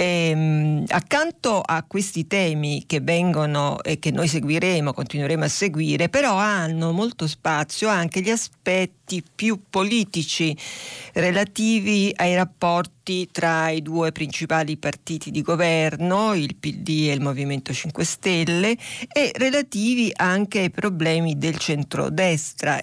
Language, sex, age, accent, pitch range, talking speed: Italian, female, 40-59, native, 155-190 Hz, 120 wpm